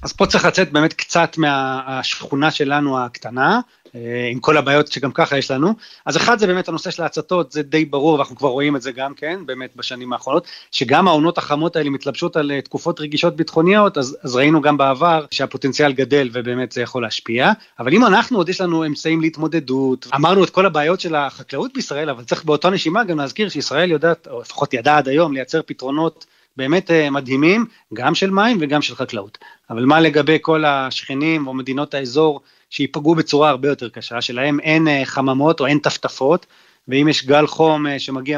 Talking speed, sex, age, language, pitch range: 185 wpm, male, 30-49, Hebrew, 135-165 Hz